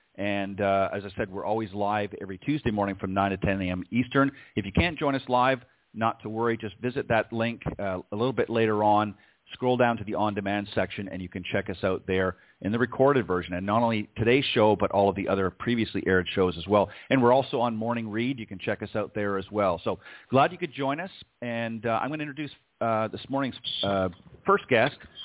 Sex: male